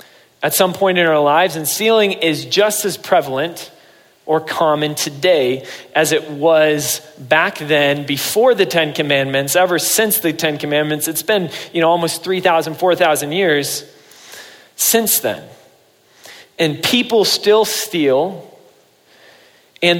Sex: male